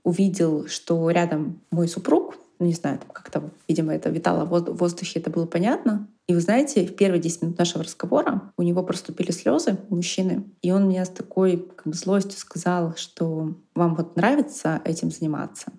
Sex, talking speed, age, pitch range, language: female, 180 wpm, 20-39, 170-205 Hz, Russian